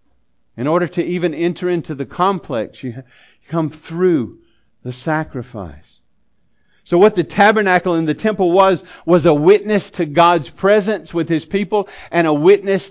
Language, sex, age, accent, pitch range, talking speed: English, male, 50-69, American, 150-195 Hz, 155 wpm